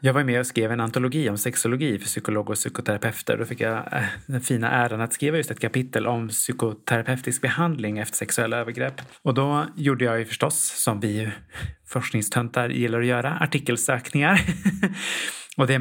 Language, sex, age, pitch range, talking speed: Swedish, male, 30-49, 110-135 Hz, 170 wpm